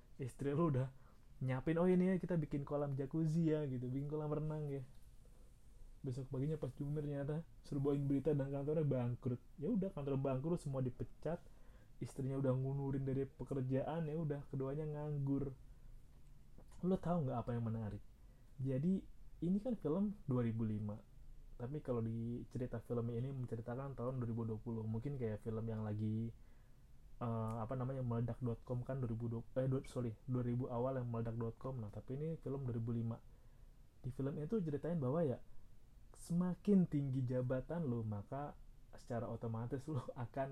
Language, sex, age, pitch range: Indonesian, male, 20-39, 120-145 Hz